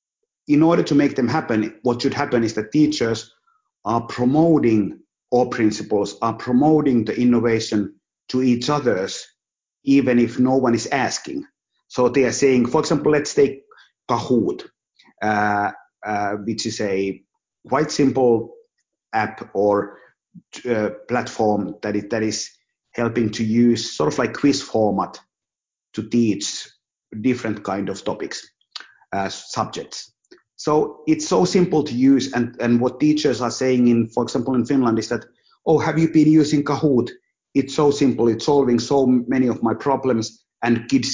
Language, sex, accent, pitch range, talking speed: English, male, Finnish, 115-140 Hz, 155 wpm